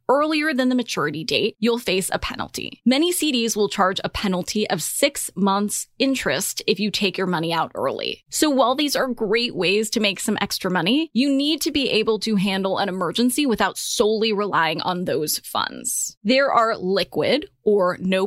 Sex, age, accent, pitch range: female, 10-29, American, 195-265 Hz